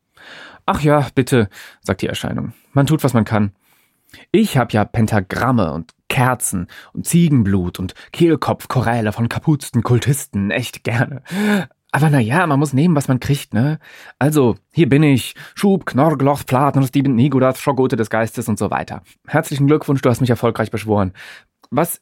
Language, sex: German, male